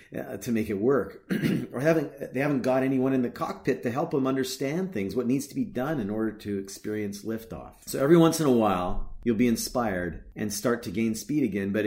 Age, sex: 40-59, male